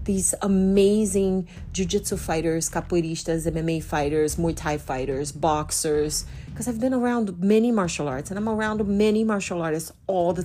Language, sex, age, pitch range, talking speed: English, female, 40-59, 165-220 Hz, 150 wpm